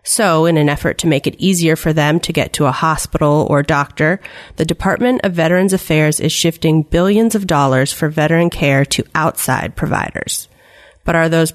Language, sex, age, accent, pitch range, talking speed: English, female, 30-49, American, 150-190 Hz, 185 wpm